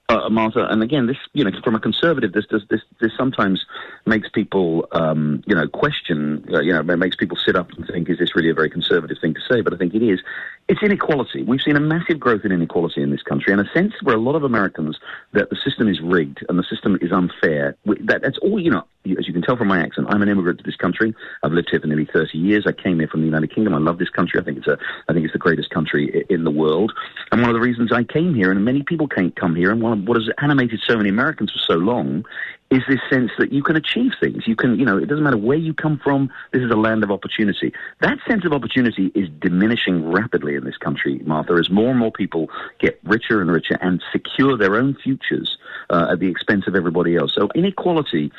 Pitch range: 85-125 Hz